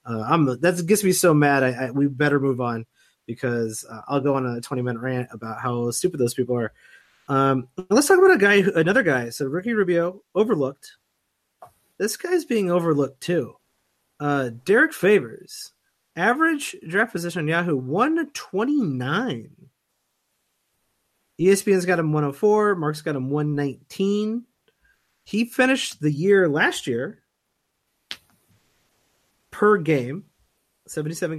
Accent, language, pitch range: American, English, 135-200 Hz